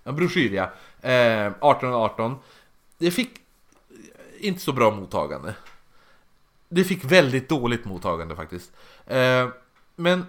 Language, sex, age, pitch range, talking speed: Swedish, male, 30-49, 110-180 Hz, 95 wpm